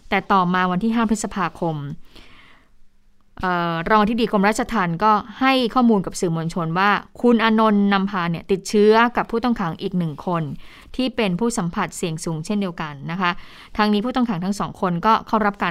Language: Thai